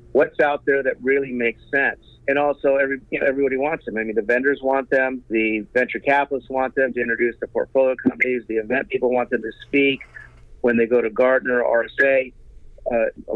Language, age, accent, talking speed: English, 50-69, American, 210 wpm